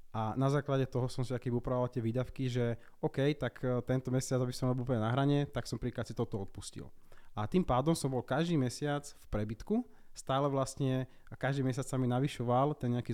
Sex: male